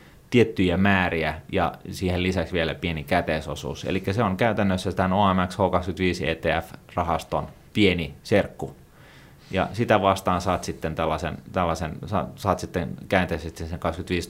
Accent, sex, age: native, male, 30-49